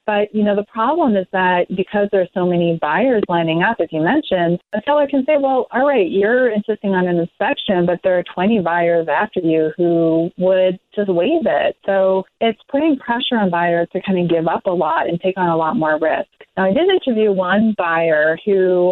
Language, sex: English, female